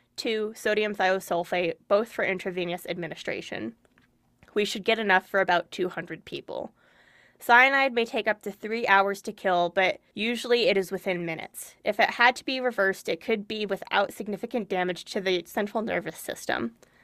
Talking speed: 160 wpm